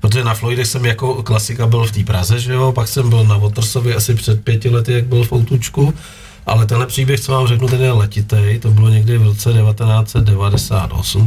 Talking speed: 220 wpm